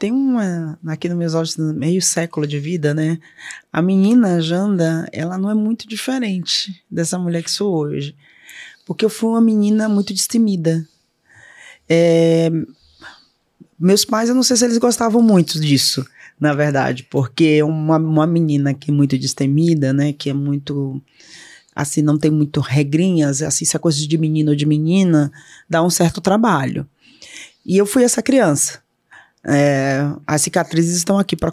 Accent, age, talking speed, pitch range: Brazilian, 20-39, 160 wpm, 150-190 Hz